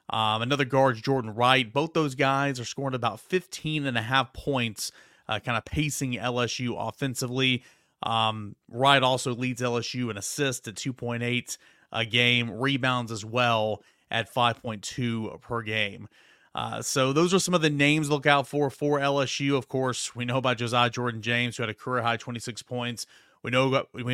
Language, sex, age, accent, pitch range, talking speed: English, male, 30-49, American, 120-145 Hz, 175 wpm